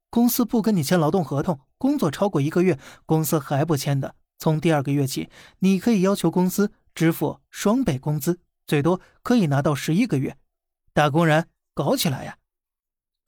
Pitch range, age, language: 150-200 Hz, 20-39, Chinese